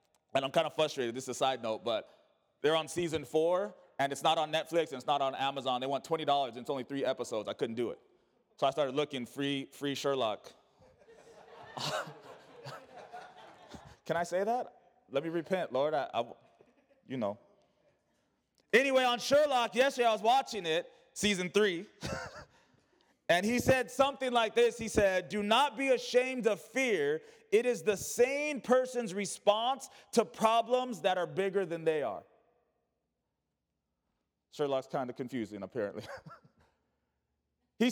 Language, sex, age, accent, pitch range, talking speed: English, male, 30-49, American, 155-255 Hz, 155 wpm